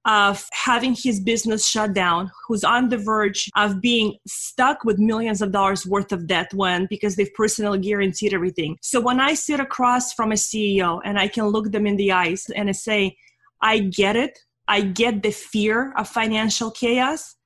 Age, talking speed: 20-39, 190 wpm